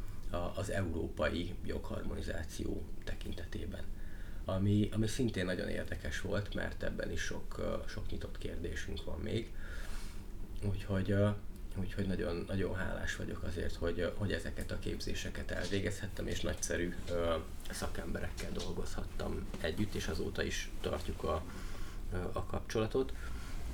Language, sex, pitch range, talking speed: Hungarian, male, 90-105 Hz, 110 wpm